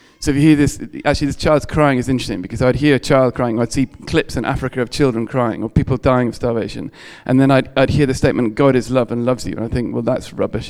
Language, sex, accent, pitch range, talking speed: English, male, British, 120-140 Hz, 280 wpm